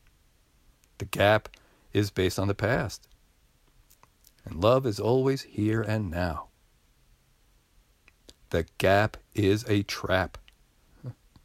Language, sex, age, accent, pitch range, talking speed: English, male, 50-69, American, 100-155 Hz, 100 wpm